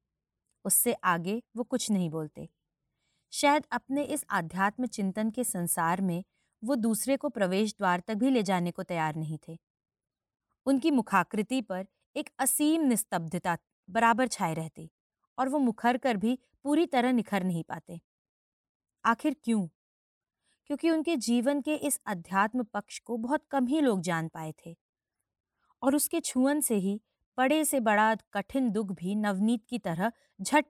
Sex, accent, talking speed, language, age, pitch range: female, native, 150 wpm, Hindi, 20-39, 185-250 Hz